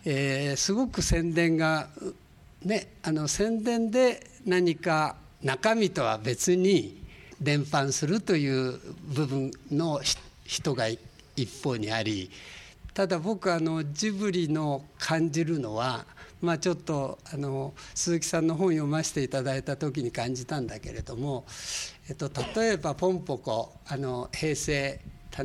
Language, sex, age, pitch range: Japanese, male, 60-79, 140-190 Hz